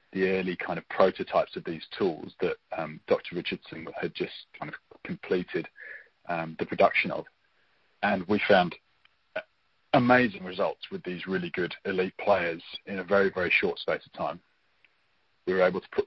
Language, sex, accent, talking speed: English, male, British, 170 wpm